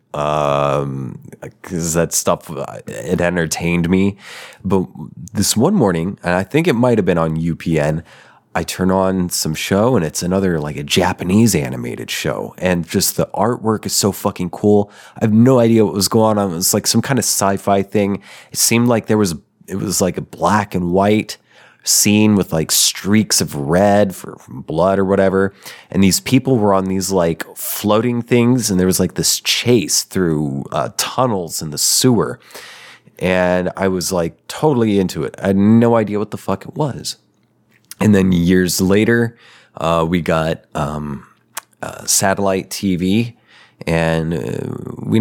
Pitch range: 85-105 Hz